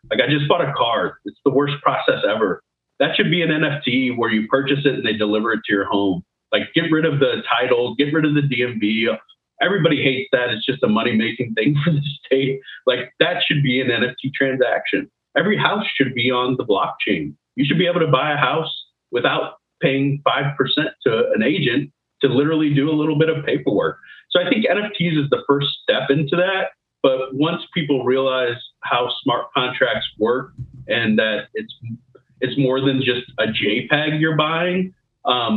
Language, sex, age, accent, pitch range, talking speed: English, male, 30-49, American, 115-150 Hz, 190 wpm